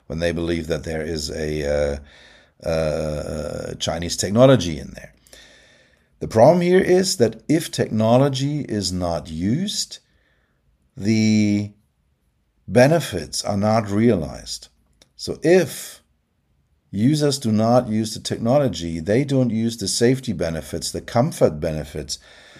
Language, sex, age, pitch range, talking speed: English, male, 50-69, 85-140 Hz, 120 wpm